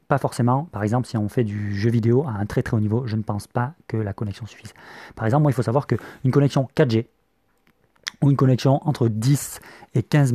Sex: male